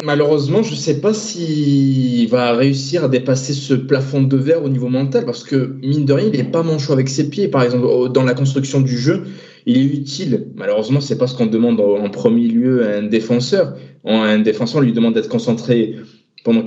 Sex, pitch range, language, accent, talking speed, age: male, 120-150 Hz, French, French, 215 wpm, 20-39